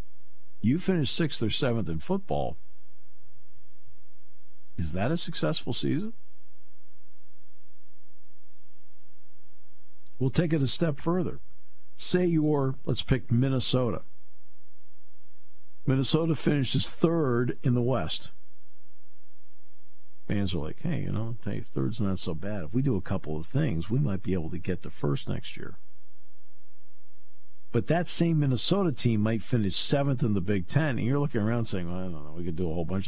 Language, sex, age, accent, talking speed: English, male, 50-69, American, 155 wpm